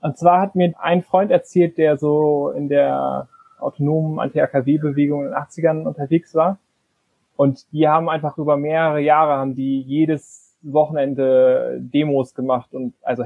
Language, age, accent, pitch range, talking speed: German, 20-39, German, 140-170 Hz, 150 wpm